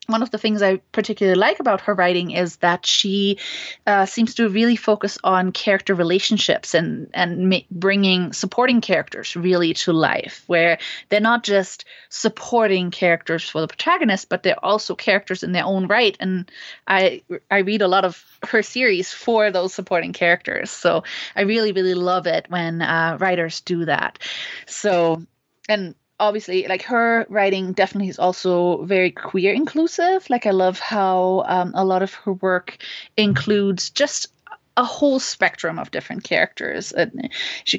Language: French